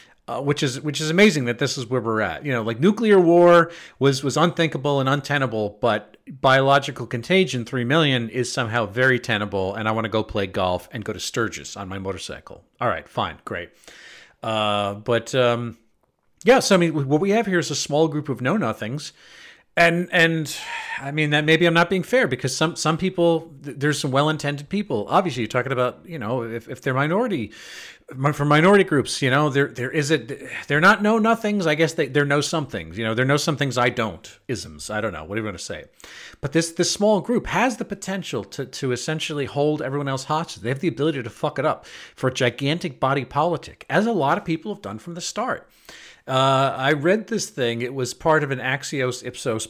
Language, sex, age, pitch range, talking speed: English, male, 40-59, 120-165 Hz, 220 wpm